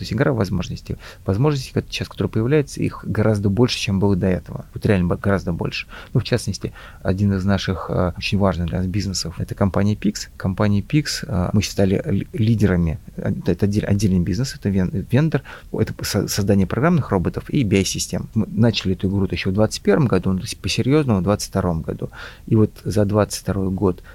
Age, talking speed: 30-49, 160 wpm